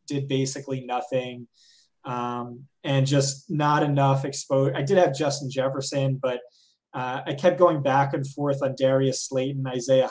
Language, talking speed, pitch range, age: English, 155 wpm, 135-160 Hz, 20-39